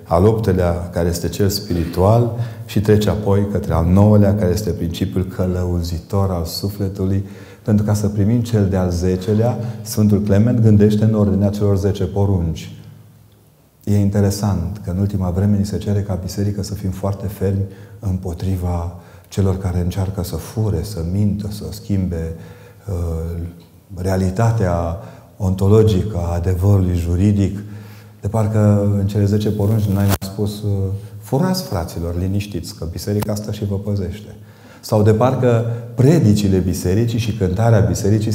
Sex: male